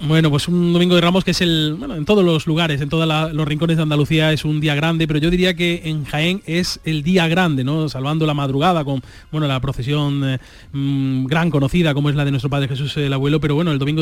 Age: 30-49